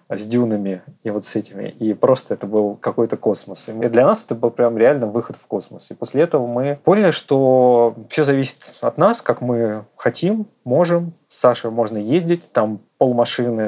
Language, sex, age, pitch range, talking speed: Russian, male, 20-39, 105-135 Hz, 185 wpm